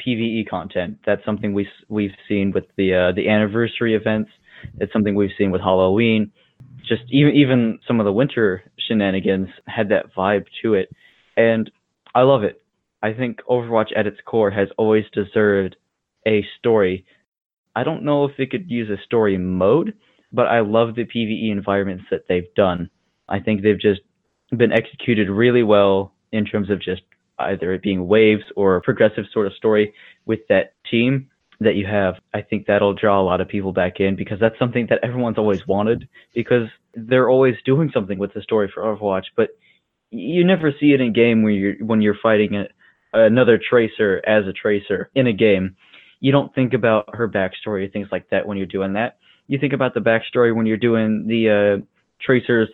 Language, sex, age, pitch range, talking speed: English, male, 20-39, 100-120 Hz, 190 wpm